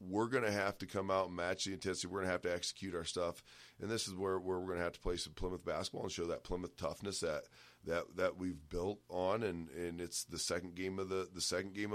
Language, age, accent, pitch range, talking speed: English, 30-49, American, 80-95 Hz, 275 wpm